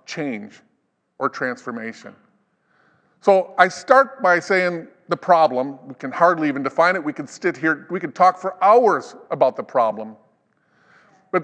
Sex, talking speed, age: male, 150 wpm, 50-69